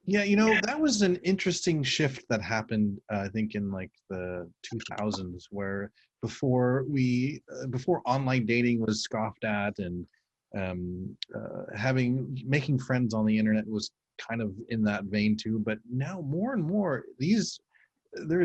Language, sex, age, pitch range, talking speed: English, male, 30-49, 110-140 Hz, 165 wpm